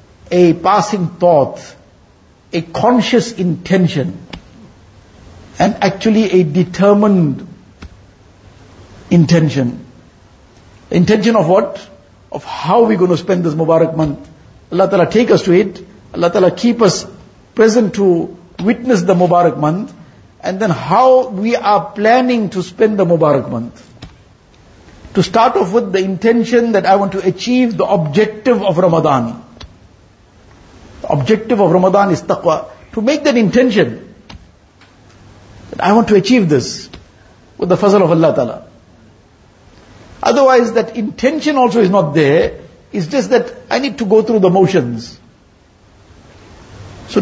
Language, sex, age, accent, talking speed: English, male, 60-79, Indian, 130 wpm